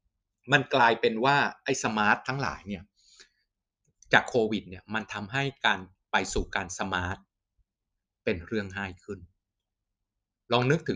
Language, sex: Thai, male